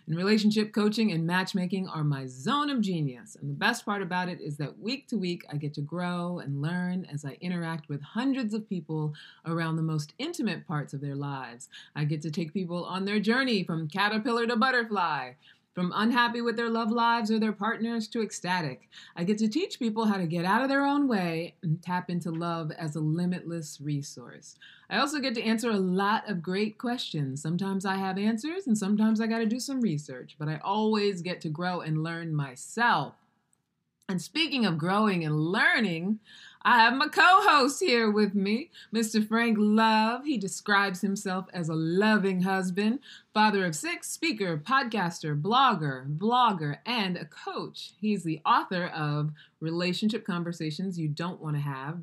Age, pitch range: 30-49, 160-220 Hz